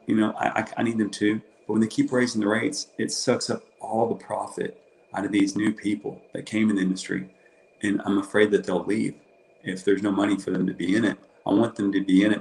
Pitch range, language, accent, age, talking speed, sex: 95-115 Hz, English, American, 40-59, 255 wpm, male